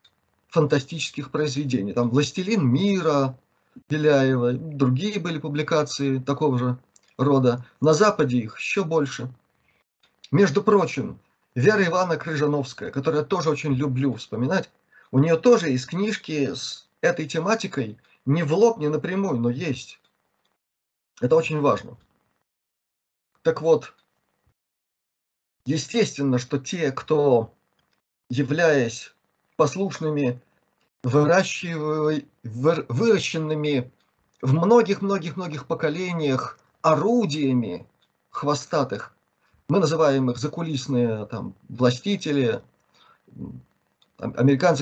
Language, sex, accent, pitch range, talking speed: Russian, male, native, 130-165 Hz, 90 wpm